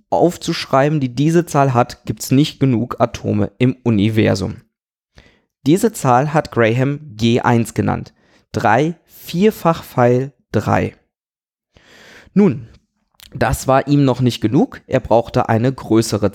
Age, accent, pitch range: 20-39, German, 115-145 Hz